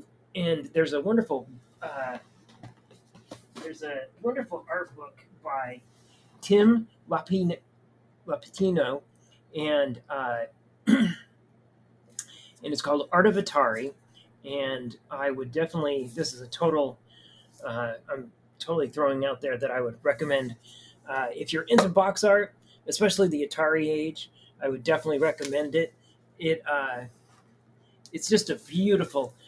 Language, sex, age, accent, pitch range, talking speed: English, male, 30-49, American, 130-175 Hz, 125 wpm